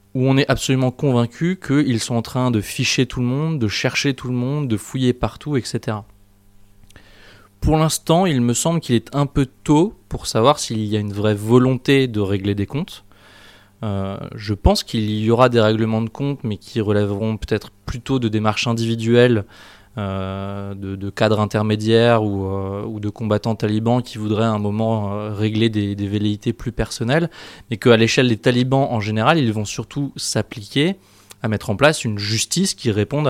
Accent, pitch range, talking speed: French, 105-130 Hz, 190 wpm